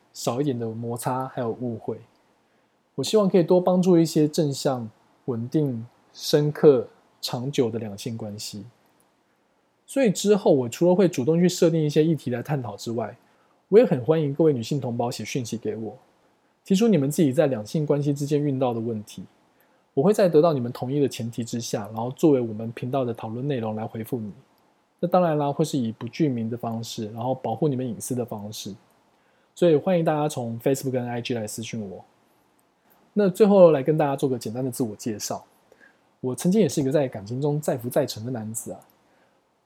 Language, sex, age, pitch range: Chinese, male, 20-39, 115-155 Hz